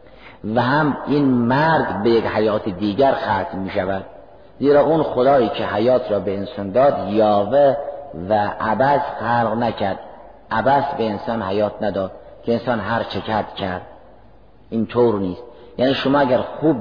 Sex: male